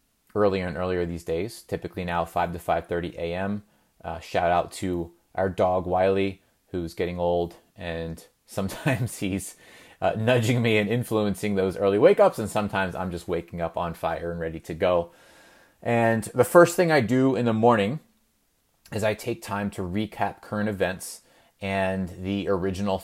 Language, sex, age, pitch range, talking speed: English, male, 30-49, 90-120 Hz, 165 wpm